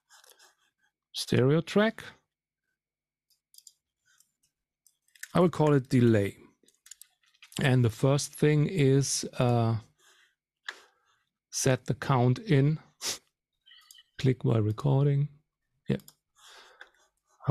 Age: 50-69